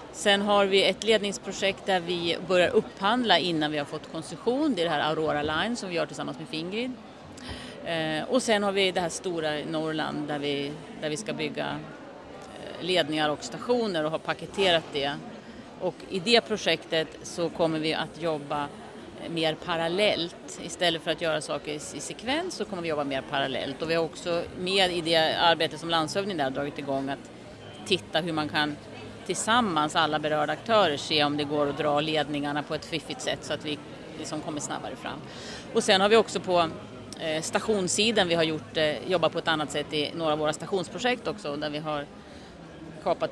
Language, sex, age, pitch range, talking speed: Swedish, female, 30-49, 155-205 Hz, 190 wpm